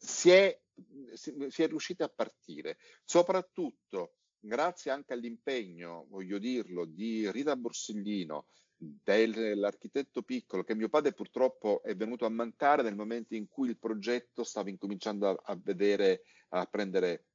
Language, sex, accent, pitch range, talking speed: Italian, male, native, 100-155 Hz, 130 wpm